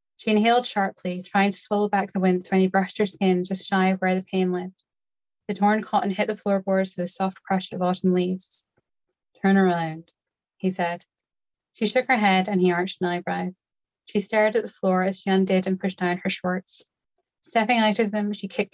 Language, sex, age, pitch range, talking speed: English, female, 10-29, 180-205 Hz, 210 wpm